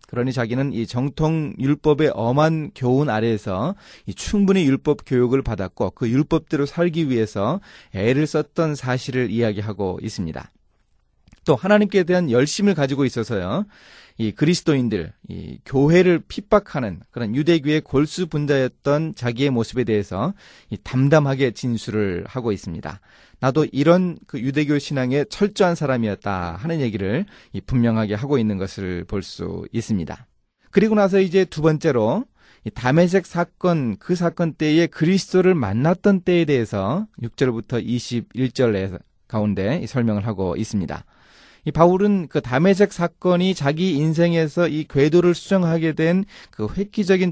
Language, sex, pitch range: Korean, male, 115-170 Hz